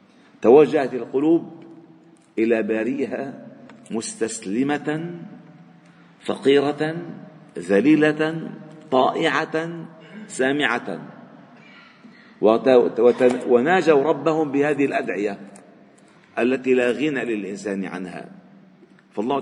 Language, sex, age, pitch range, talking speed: Arabic, male, 50-69, 110-160 Hz, 70 wpm